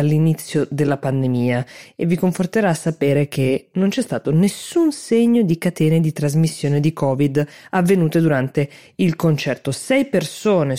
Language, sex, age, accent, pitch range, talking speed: Italian, female, 20-39, native, 140-165 Hz, 140 wpm